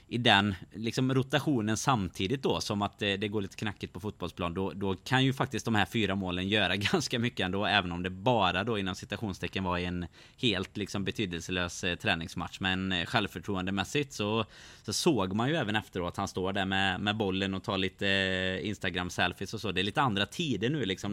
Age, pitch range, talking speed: 20-39, 95-110 Hz, 205 wpm